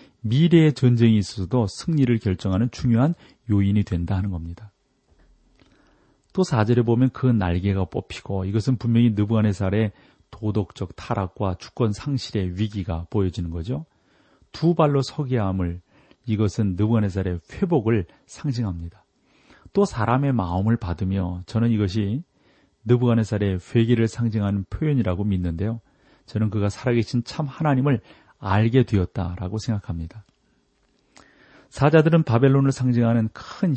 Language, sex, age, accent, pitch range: Korean, male, 40-59, native, 95-130 Hz